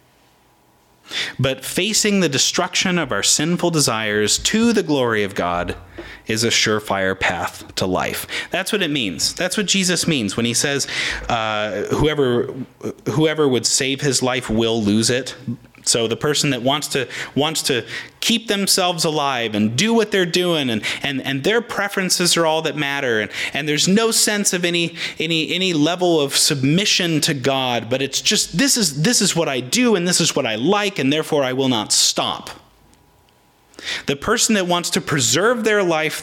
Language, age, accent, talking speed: English, 30-49, American, 180 wpm